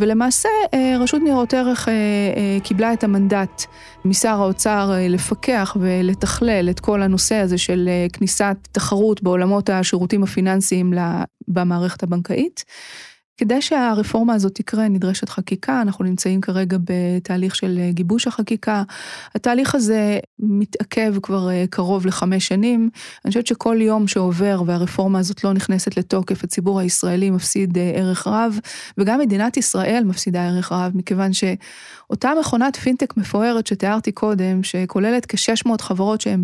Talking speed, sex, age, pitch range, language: 125 wpm, female, 20-39, 185-220 Hz, Hebrew